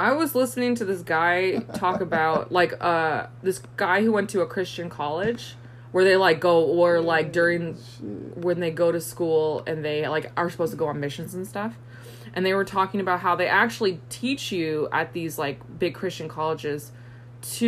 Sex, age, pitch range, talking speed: female, 20-39, 125-190 Hz, 195 wpm